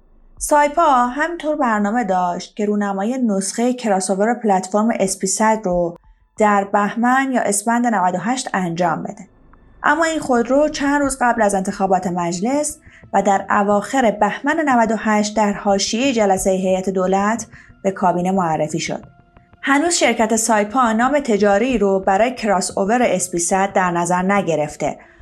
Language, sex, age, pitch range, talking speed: Persian, female, 30-49, 190-255 Hz, 130 wpm